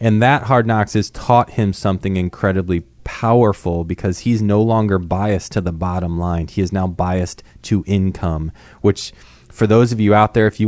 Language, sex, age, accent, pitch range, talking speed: English, male, 20-39, American, 95-115 Hz, 190 wpm